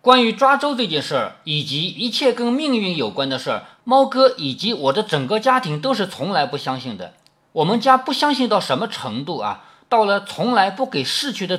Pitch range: 165-245 Hz